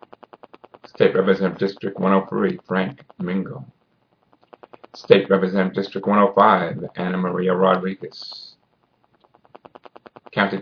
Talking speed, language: 80 wpm, English